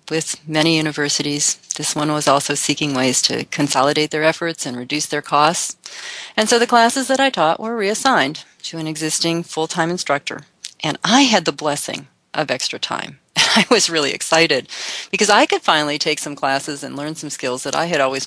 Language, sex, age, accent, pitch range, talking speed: English, female, 40-59, American, 145-175 Hz, 190 wpm